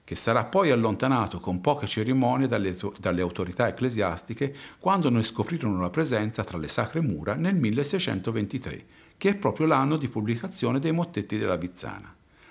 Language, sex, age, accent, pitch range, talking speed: Italian, male, 50-69, native, 95-145 Hz, 155 wpm